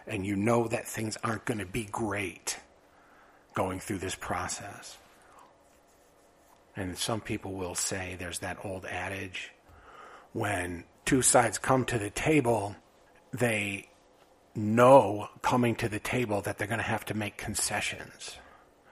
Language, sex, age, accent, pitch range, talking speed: English, male, 50-69, American, 95-115 Hz, 140 wpm